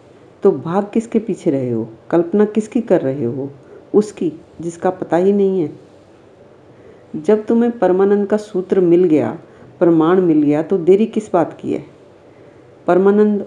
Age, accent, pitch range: 50-69, native, 160-200 Hz